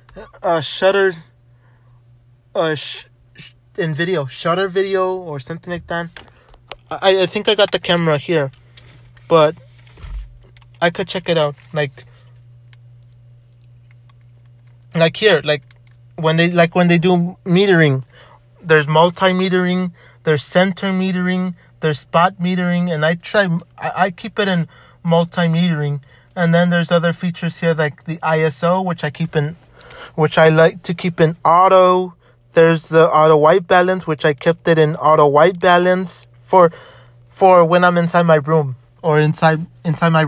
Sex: male